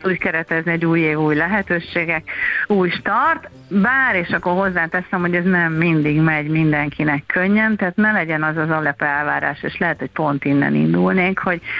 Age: 30-49